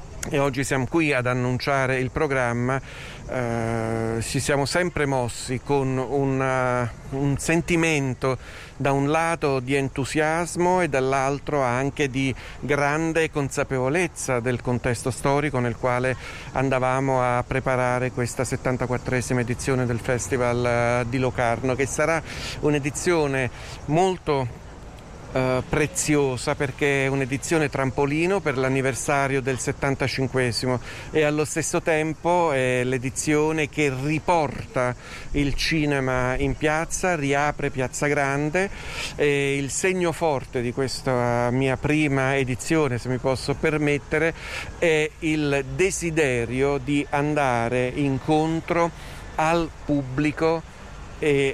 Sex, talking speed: male, 110 wpm